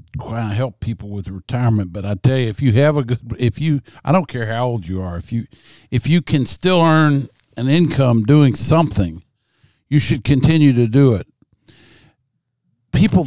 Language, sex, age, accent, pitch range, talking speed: English, male, 60-79, American, 115-150 Hz, 190 wpm